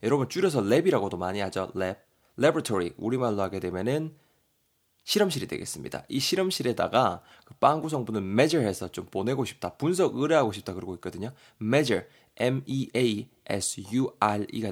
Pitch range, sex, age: 105-140 Hz, male, 20-39